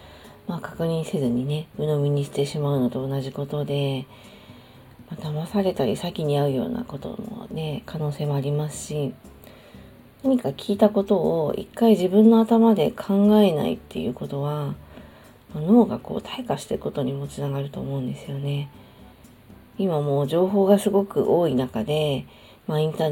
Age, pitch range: 40-59, 140-210 Hz